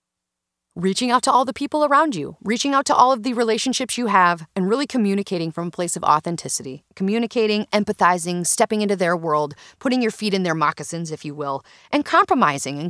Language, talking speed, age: English, 200 wpm, 30-49